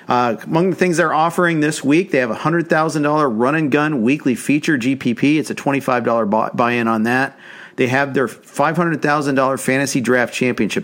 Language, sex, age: English, male, 50-69